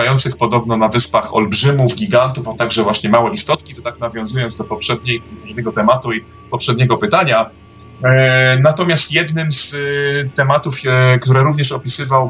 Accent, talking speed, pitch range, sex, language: native, 125 wpm, 115-145 Hz, male, Polish